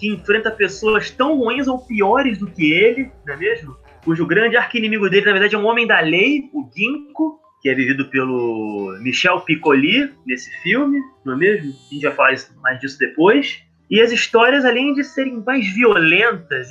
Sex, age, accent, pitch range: male, 20-39, Brazilian, 150-235 Hz